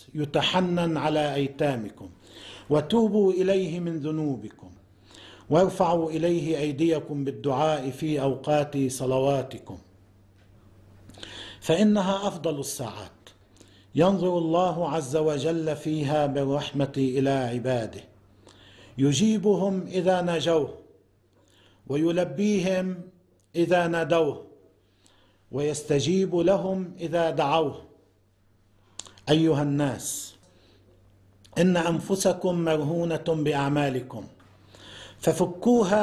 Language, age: Persian, 50-69